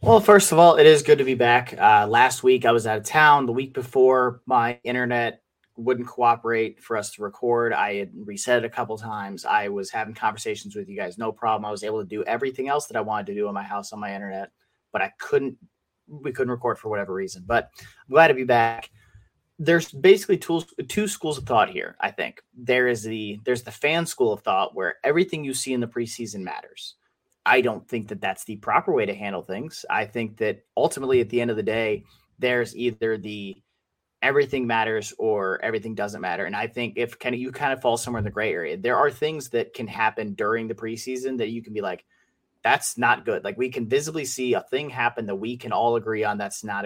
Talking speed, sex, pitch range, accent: 235 wpm, male, 110-130 Hz, American